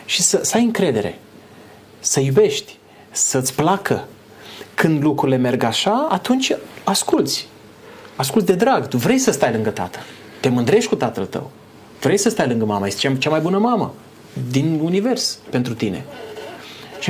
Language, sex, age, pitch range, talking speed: Romanian, male, 30-49, 130-205 Hz, 155 wpm